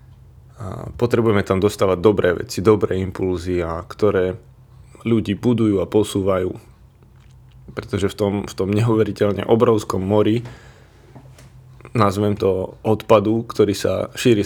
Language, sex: Slovak, male